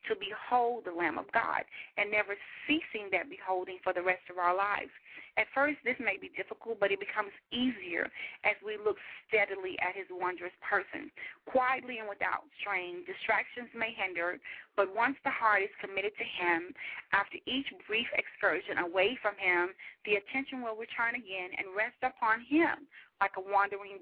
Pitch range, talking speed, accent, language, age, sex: 190-245 Hz, 170 wpm, American, English, 30-49, female